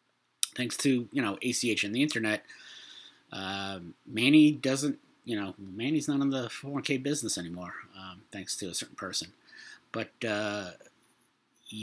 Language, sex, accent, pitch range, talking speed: English, male, American, 105-135 Hz, 145 wpm